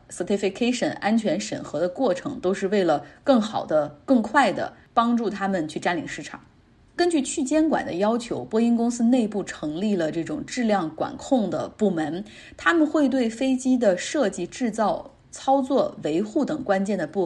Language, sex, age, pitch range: Chinese, female, 20-39, 180-250 Hz